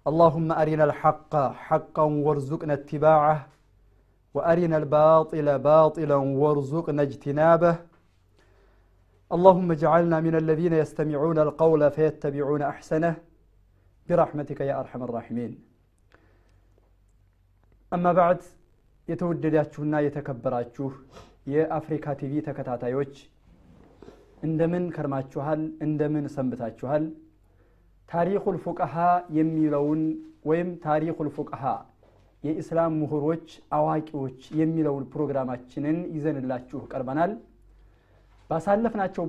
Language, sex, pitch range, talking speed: Amharic, male, 135-165 Hz, 75 wpm